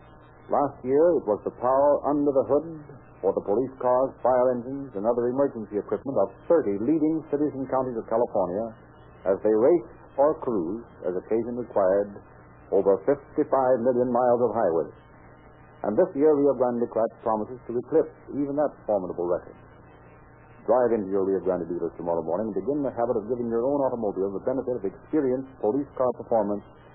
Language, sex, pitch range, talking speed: English, male, 110-140 Hz, 175 wpm